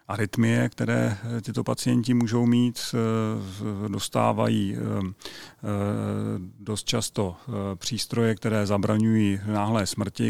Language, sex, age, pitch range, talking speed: Czech, male, 40-59, 100-115 Hz, 80 wpm